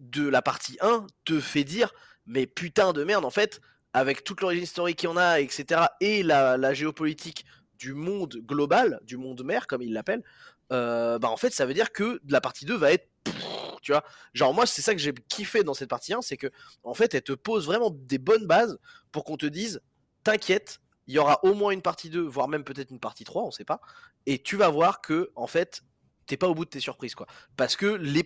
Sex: male